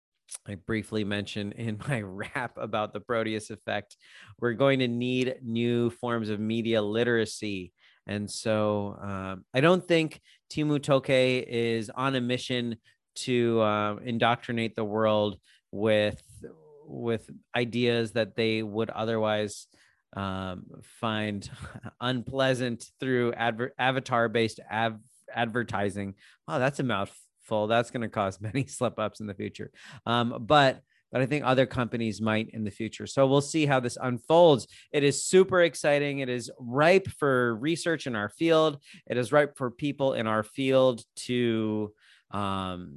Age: 30-49